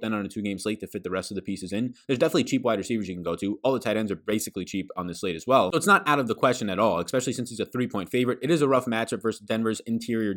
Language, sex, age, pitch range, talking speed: English, male, 20-39, 100-120 Hz, 330 wpm